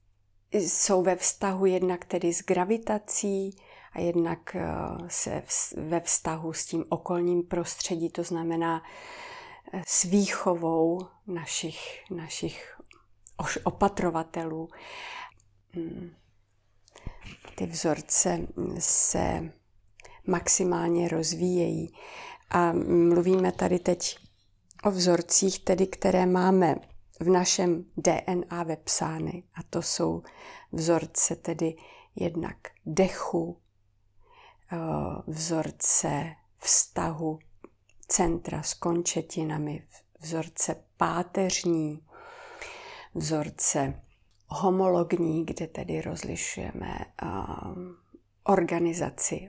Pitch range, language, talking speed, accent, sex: 160-185 Hz, Czech, 75 wpm, native, female